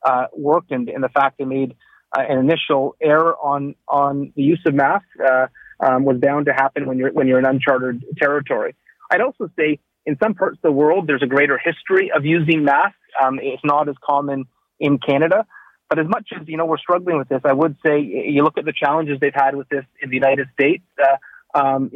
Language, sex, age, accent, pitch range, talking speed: English, male, 30-49, American, 135-155 Hz, 220 wpm